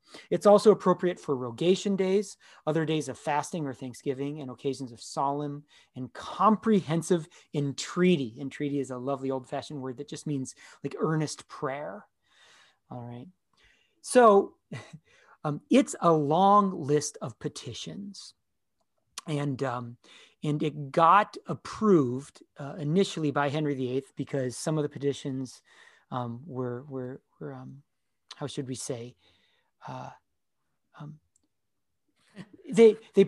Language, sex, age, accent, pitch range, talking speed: English, male, 30-49, American, 135-170 Hz, 125 wpm